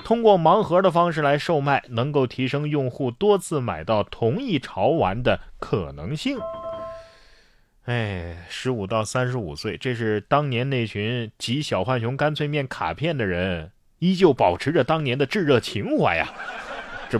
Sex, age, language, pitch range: male, 30-49, Chinese, 105-150 Hz